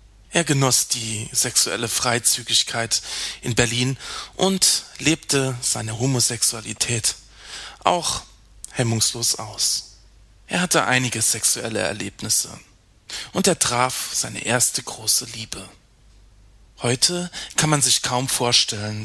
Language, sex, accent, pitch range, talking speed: German, male, German, 110-130 Hz, 100 wpm